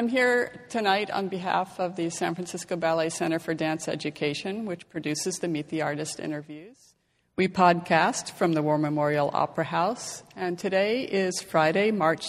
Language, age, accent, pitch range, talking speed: English, 50-69, American, 155-190 Hz, 165 wpm